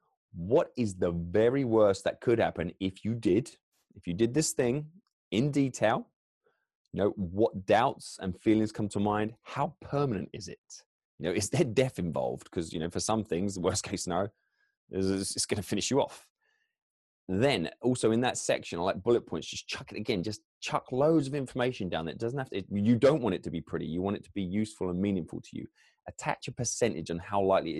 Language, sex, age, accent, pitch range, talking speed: English, male, 20-39, British, 90-130 Hz, 215 wpm